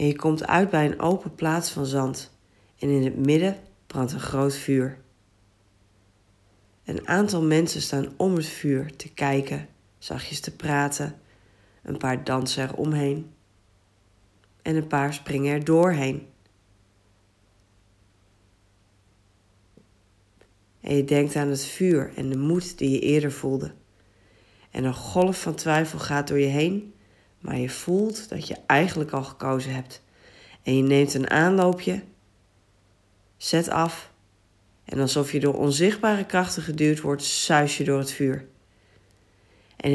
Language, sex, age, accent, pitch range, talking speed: Dutch, female, 40-59, Dutch, 100-150 Hz, 135 wpm